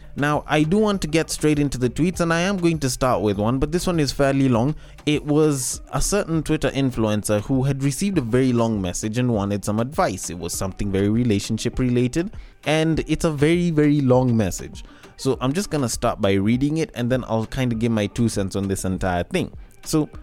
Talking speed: 230 wpm